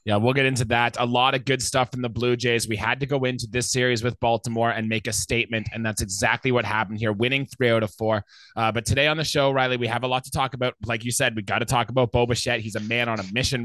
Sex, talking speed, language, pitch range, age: male, 295 wpm, English, 115-140 Hz, 20-39